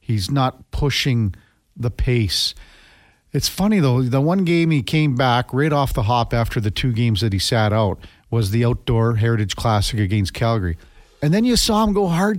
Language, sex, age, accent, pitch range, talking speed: English, male, 50-69, American, 110-145 Hz, 195 wpm